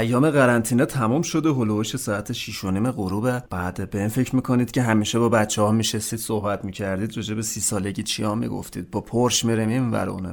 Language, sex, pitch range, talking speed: Persian, male, 110-155 Hz, 200 wpm